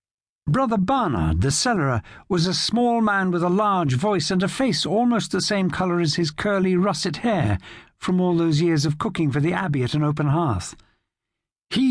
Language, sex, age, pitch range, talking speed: English, male, 60-79, 135-200 Hz, 190 wpm